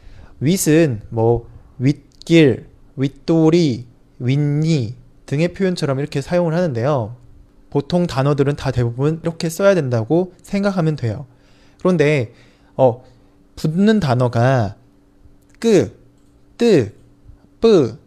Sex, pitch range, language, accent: male, 115-170 Hz, Chinese, Korean